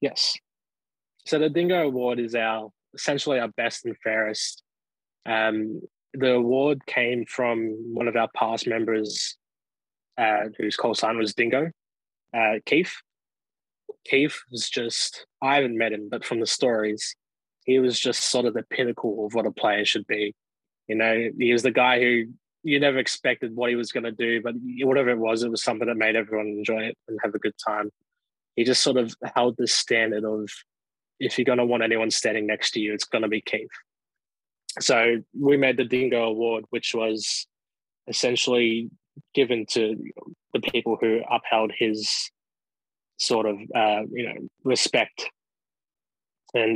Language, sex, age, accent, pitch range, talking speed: English, male, 20-39, Australian, 110-125 Hz, 170 wpm